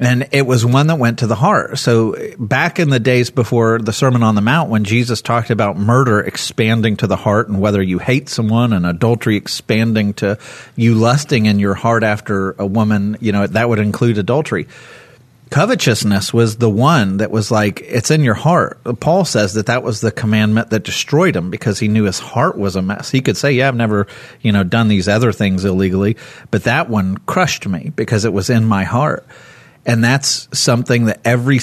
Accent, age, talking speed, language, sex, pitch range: American, 40-59, 210 wpm, English, male, 105-125 Hz